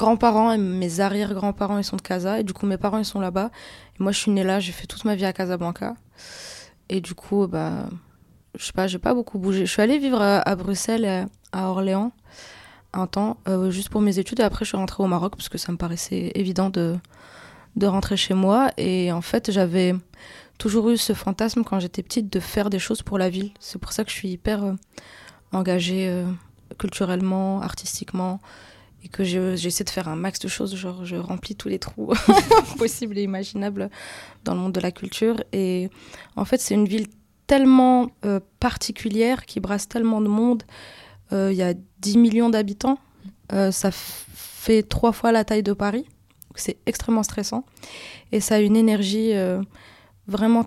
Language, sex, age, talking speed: French, female, 20-39, 200 wpm